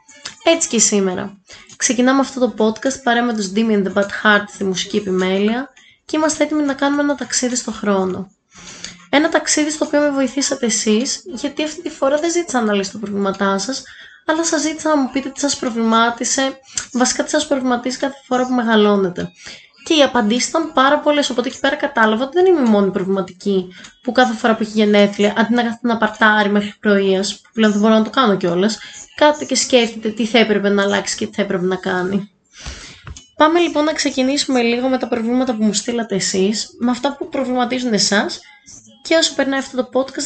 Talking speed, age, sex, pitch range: 200 wpm, 20-39, female, 205-280 Hz